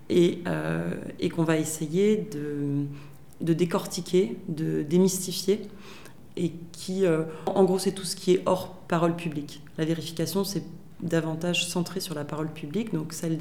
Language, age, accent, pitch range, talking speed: Swedish, 30-49, French, 155-185 Hz, 155 wpm